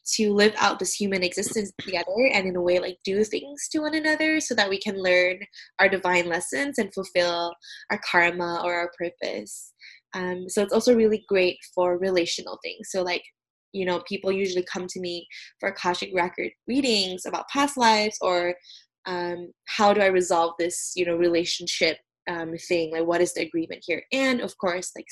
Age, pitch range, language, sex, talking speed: 10-29, 175-205 Hz, English, female, 190 wpm